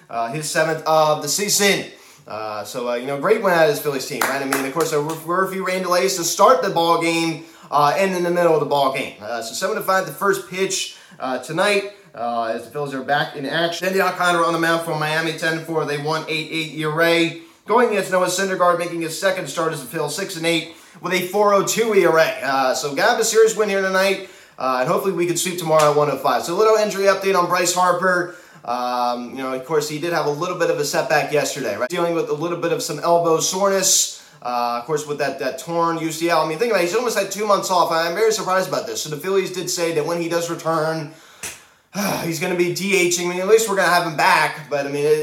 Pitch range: 150-185 Hz